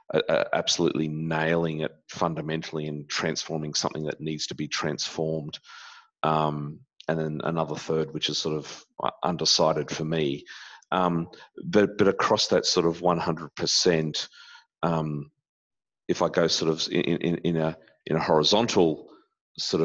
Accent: Australian